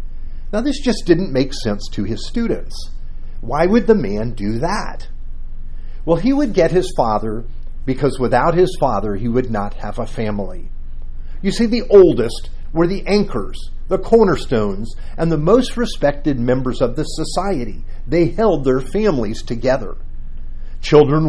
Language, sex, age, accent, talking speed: English, male, 50-69, American, 150 wpm